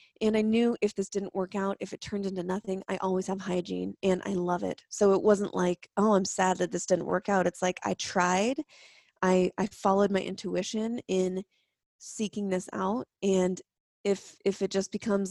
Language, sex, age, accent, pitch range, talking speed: English, female, 20-39, American, 185-200 Hz, 205 wpm